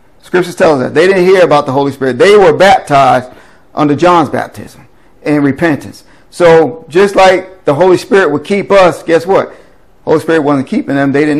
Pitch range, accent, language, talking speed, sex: 130-155 Hz, American, English, 200 wpm, male